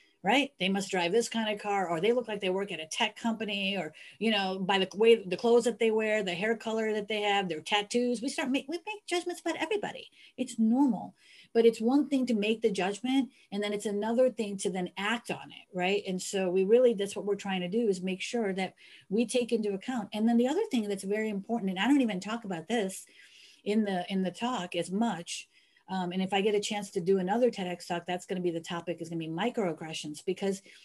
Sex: female